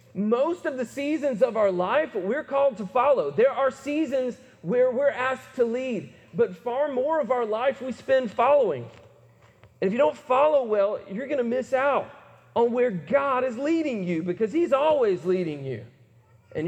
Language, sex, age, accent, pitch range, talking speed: English, male, 40-59, American, 170-260 Hz, 185 wpm